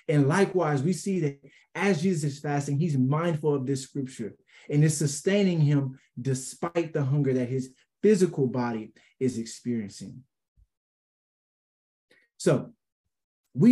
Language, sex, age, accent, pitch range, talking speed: English, male, 20-39, American, 130-175 Hz, 125 wpm